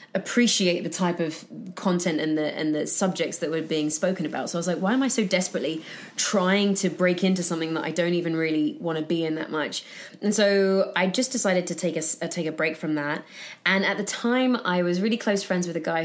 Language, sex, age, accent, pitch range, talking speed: English, female, 20-39, British, 165-195 Hz, 245 wpm